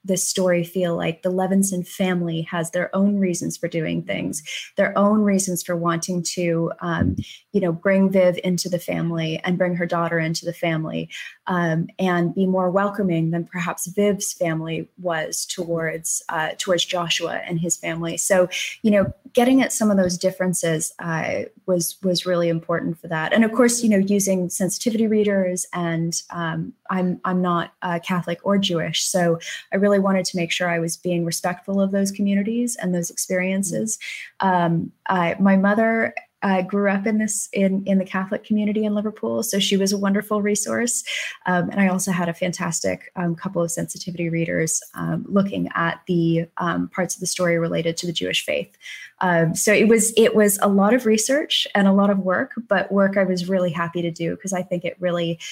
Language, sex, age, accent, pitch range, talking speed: English, female, 20-39, American, 170-200 Hz, 190 wpm